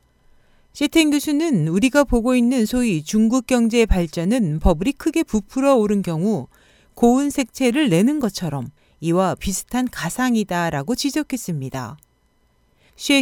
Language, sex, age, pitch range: Korean, female, 40-59, 175-260 Hz